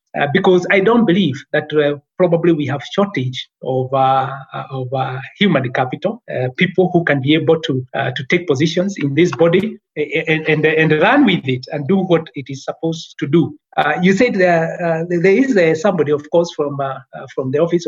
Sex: male